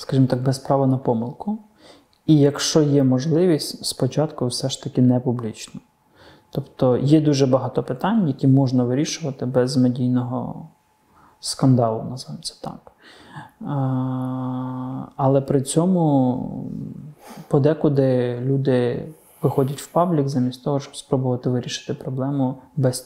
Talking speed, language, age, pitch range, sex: 115 wpm, Russian, 20-39, 130-155 Hz, male